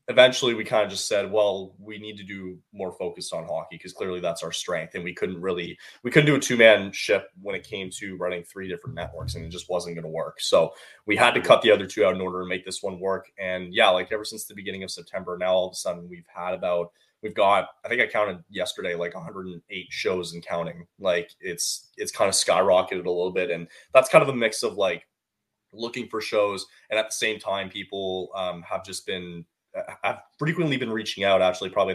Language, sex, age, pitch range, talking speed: English, male, 20-39, 90-110 Hz, 240 wpm